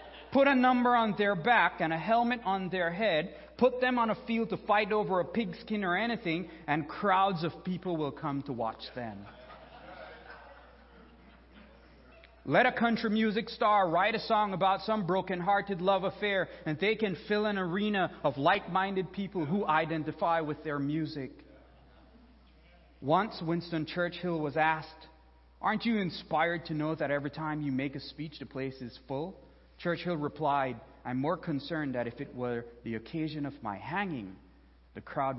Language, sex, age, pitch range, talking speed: English, male, 30-49, 140-190 Hz, 165 wpm